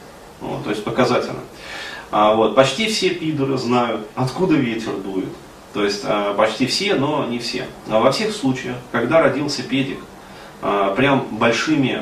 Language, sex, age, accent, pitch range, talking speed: Russian, male, 30-49, native, 105-135 Hz, 155 wpm